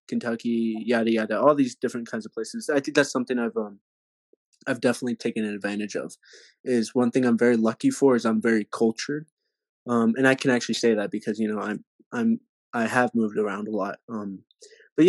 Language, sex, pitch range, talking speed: English, male, 110-135 Hz, 205 wpm